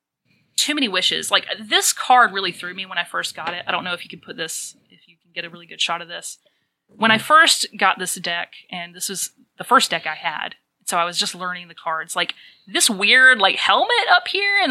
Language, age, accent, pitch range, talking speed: English, 30-49, American, 175-225 Hz, 250 wpm